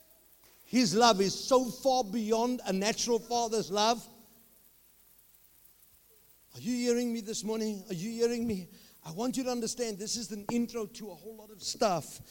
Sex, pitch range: male, 190-235 Hz